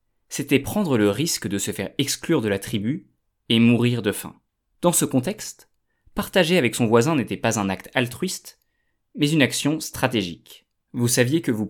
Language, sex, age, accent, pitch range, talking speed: French, male, 20-39, French, 105-140 Hz, 180 wpm